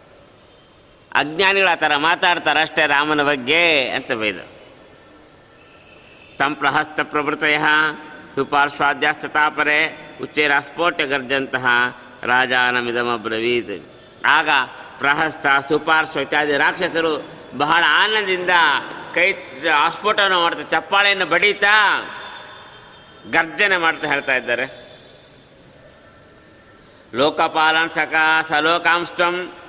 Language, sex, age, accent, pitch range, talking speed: Kannada, male, 50-69, native, 145-175 Hz, 75 wpm